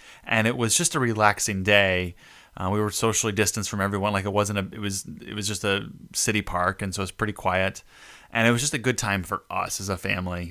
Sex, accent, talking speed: male, American, 250 wpm